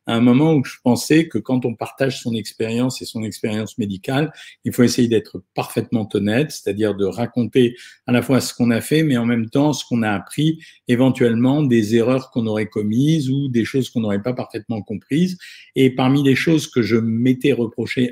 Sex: male